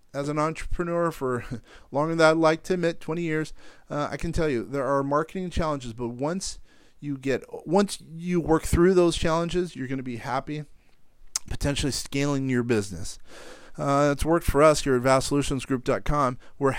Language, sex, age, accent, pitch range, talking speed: English, male, 40-59, American, 130-165 Hz, 175 wpm